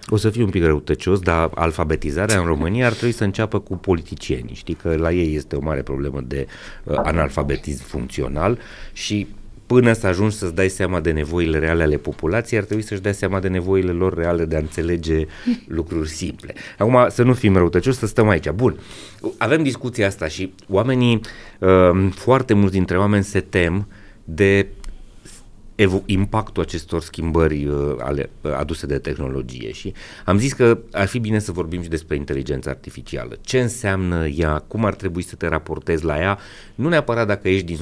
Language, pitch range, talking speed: Romanian, 80-110 Hz, 180 wpm